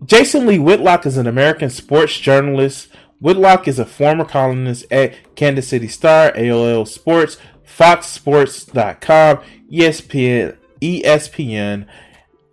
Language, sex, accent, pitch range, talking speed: English, male, American, 120-170 Hz, 105 wpm